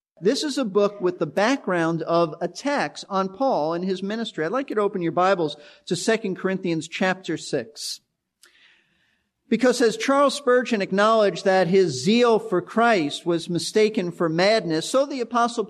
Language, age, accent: English, 50-69, American